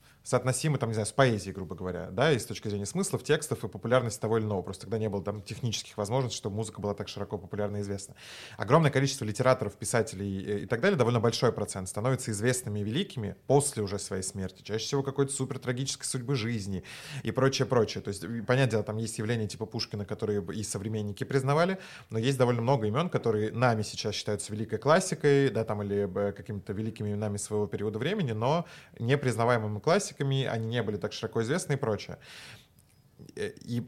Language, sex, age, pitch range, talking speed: Russian, male, 20-39, 105-130 Hz, 190 wpm